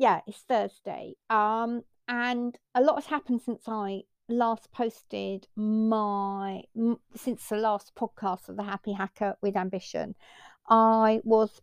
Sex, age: female, 60-79